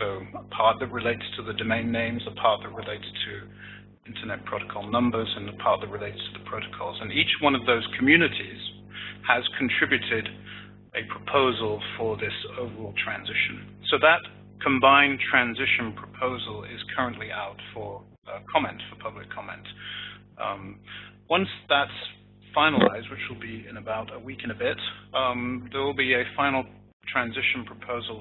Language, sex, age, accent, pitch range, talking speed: English, male, 30-49, British, 105-125 Hz, 155 wpm